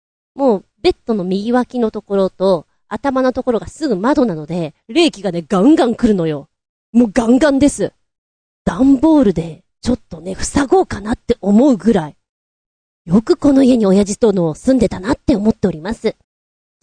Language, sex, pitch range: Japanese, female, 190-285 Hz